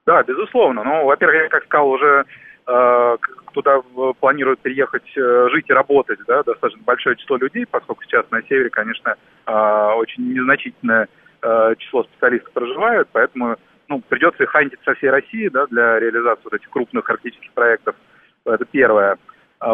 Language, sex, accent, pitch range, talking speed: Russian, male, native, 120-175 Hz, 155 wpm